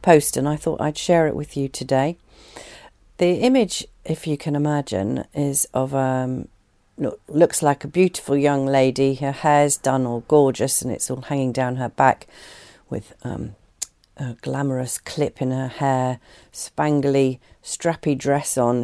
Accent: British